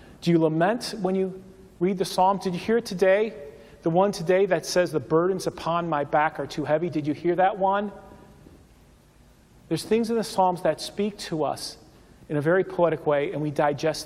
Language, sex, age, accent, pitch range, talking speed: English, male, 40-59, American, 155-195 Hz, 205 wpm